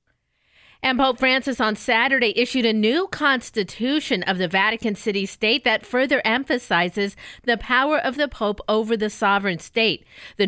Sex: female